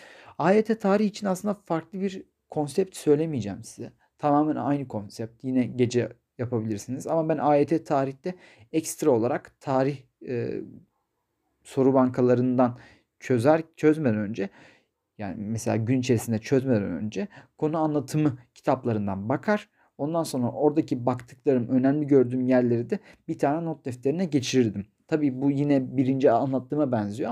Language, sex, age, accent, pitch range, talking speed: Turkish, male, 40-59, native, 125-155 Hz, 125 wpm